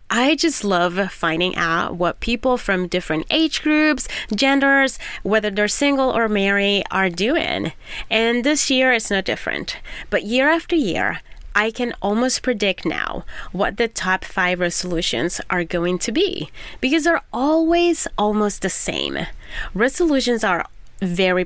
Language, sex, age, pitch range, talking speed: English, female, 30-49, 185-260 Hz, 145 wpm